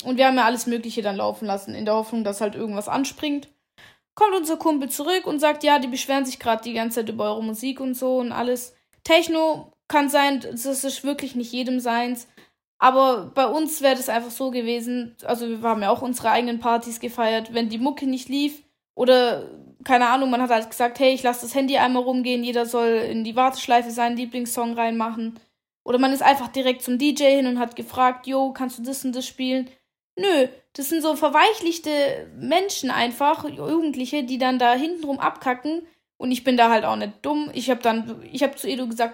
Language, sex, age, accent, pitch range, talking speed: German, female, 20-39, German, 230-275 Hz, 210 wpm